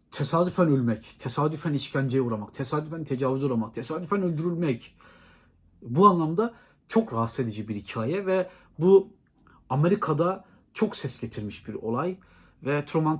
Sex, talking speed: male, 125 wpm